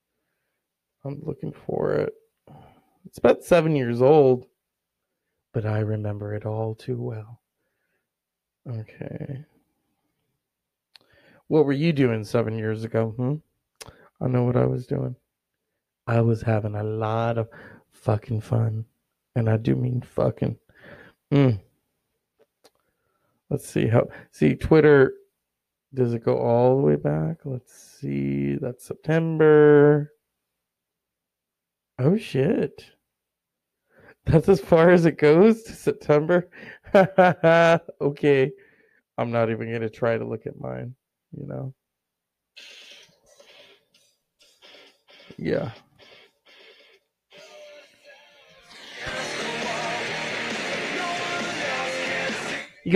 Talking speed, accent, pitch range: 95 wpm, American, 115-160 Hz